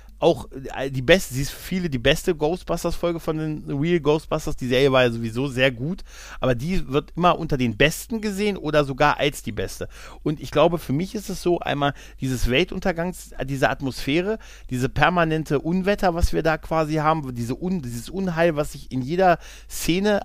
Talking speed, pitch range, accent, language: 185 wpm, 125-170 Hz, German, German